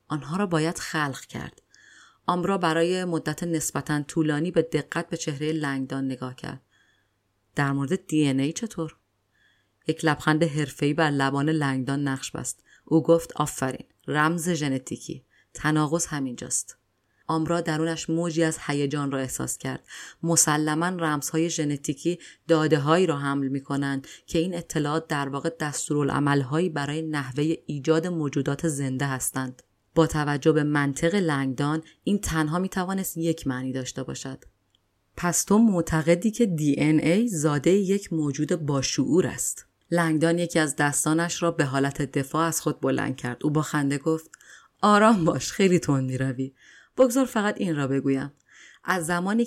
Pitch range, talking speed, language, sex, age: 140-170 Hz, 145 wpm, Persian, female, 30-49